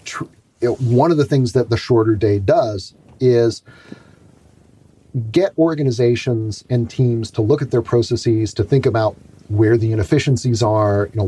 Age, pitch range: 40-59, 105-130 Hz